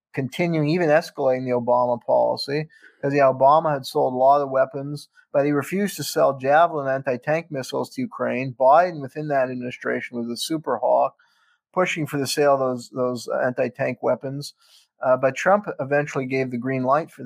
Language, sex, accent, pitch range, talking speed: English, male, American, 130-155 Hz, 180 wpm